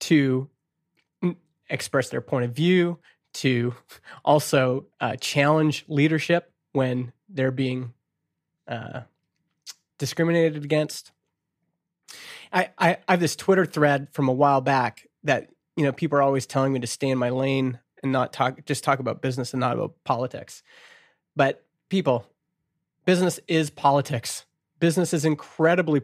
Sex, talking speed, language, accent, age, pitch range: male, 140 wpm, English, American, 30-49, 135-165 Hz